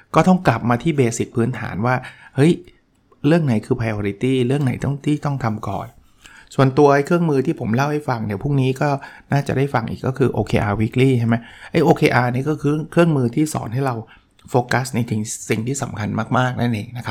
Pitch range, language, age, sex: 110-140 Hz, Thai, 60-79, male